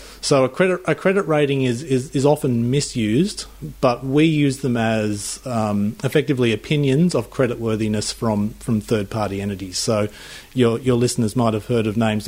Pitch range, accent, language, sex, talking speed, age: 110-130 Hz, Australian, English, male, 170 wpm, 30-49